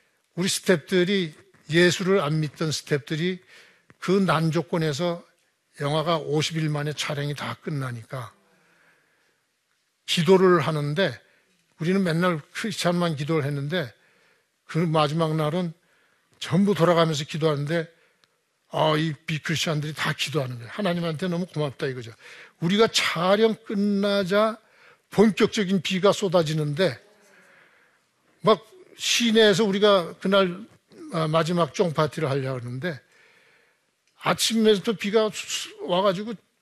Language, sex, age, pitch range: Korean, male, 60-79, 150-205 Hz